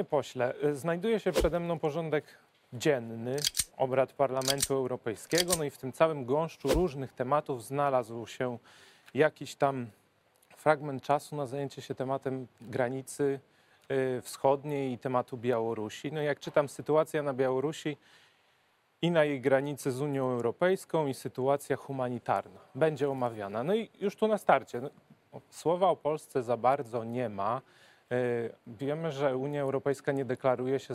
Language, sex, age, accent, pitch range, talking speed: Polish, male, 30-49, native, 125-150 Hz, 140 wpm